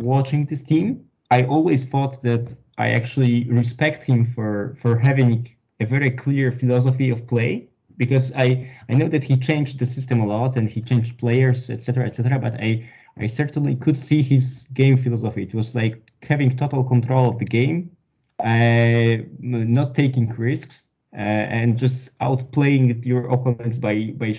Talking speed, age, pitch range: 165 wpm, 20-39, 115-135 Hz